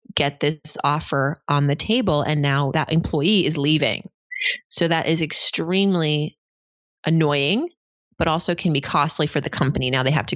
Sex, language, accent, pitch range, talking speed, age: female, English, American, 145-180 Hz, 170 wpm, 30-49